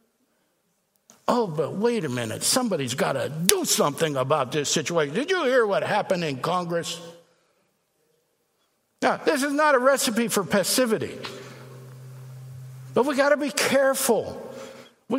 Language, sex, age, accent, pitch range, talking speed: English, male, 60-79, American, 170-255 Hz, 140 wpm